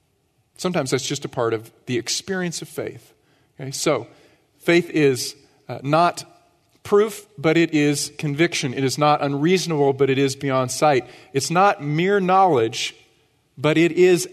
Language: English